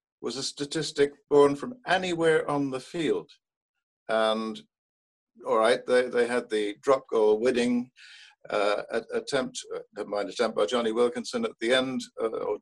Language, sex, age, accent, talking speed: English, male, 50-69, British, 140 wpm